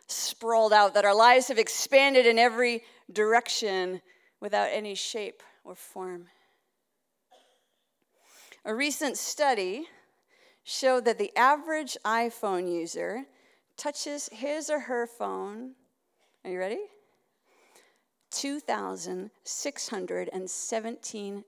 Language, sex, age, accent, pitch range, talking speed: English, female, 40-59, American, 215-340 Hz, 90 wpm